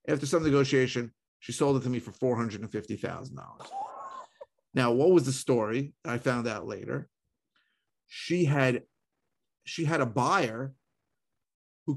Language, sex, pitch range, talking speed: English, male, 120-140 Hz, 130 wpm